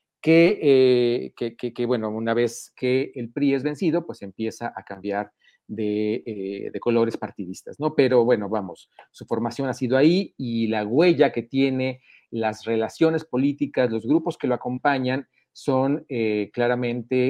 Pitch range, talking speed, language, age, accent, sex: 115-140 Hz, 155 wpm, Spanish, 40-59, Mexican, male